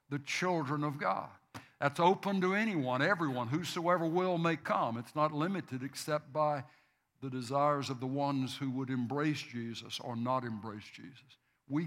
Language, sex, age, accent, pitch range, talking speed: English, male, 60-79, American, 125-150 Hz, 160 wpm